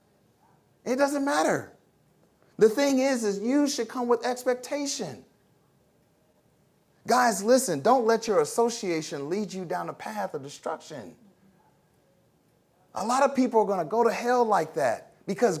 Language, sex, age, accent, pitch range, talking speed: English, male, 30-49, American, 170-265 Hz, 145 wpm